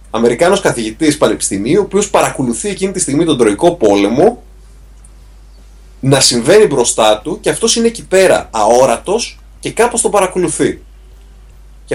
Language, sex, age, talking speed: Greek, male, 30-49, 135 wpm